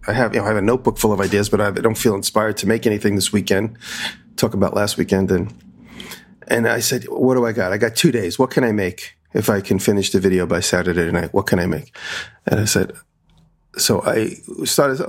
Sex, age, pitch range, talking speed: male, 40-59, 105-125 Hz, 240 wpm